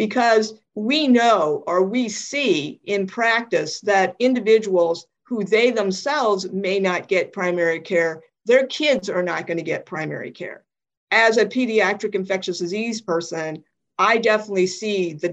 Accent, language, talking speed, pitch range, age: American, English, 145 wpm, 175-215 Hz, 50-69